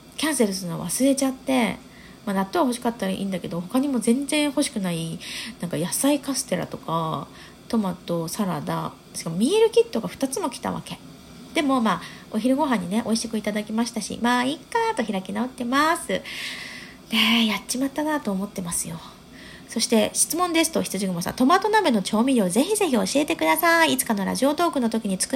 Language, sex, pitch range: Japanese, female, 205-285 Hz